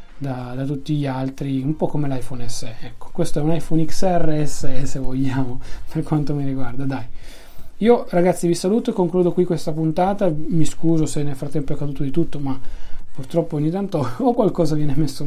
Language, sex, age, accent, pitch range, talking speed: Italian, male, 30-49, native, 140-165 Hz, 195 wpm